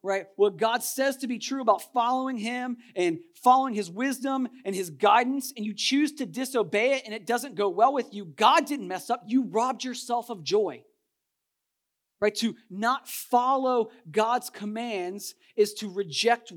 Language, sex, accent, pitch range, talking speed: English, male, American, 170-245 Hz, 175 wpm